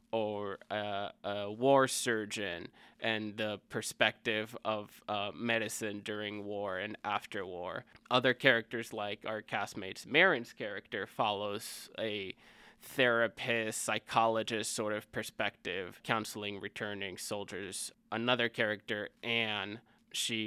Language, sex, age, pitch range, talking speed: English, male, 20-39, 105-115 Hz, 110 wpm